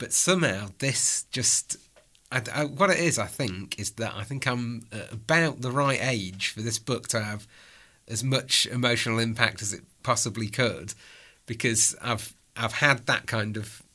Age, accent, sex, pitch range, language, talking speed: 30-49, British, male, 110-130 Hz, English, 170 wpm